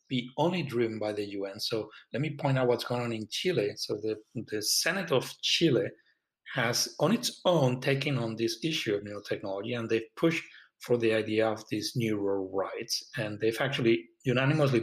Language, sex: English, male